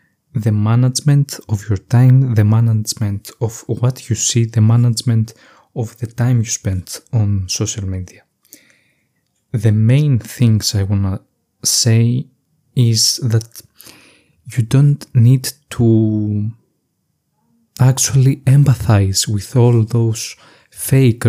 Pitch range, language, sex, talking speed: 110-125 Hz, Greek, male, 115 wpm